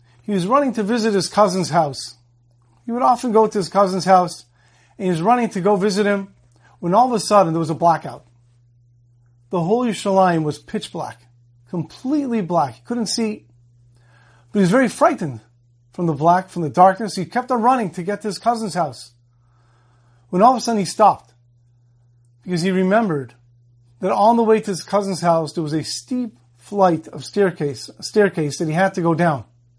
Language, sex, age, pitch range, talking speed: English, male, 40-59, 120-200 Hz, 195 wpm